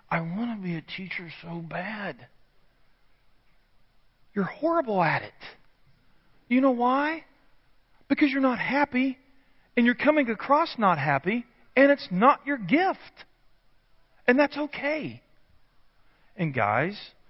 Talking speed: 120 wpm